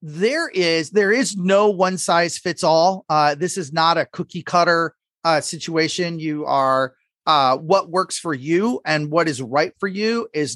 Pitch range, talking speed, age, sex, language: 150-190 Hz, 180 wpm, 40-59, male, English